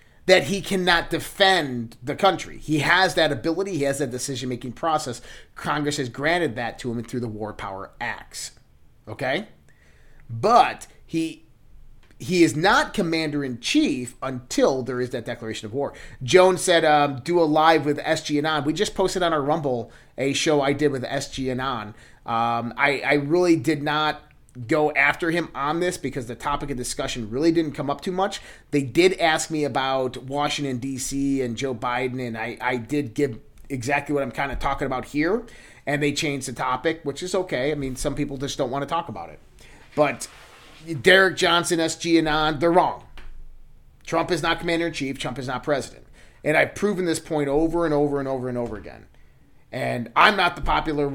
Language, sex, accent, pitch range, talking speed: English, male, American, 130-165 Hz, 190 wpm